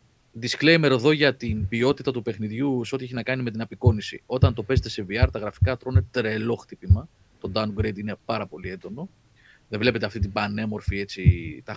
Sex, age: male, 30-49